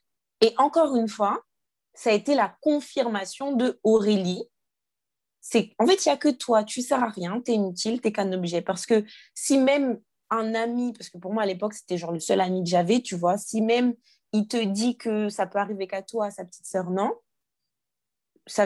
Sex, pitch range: female, 185-230 Hz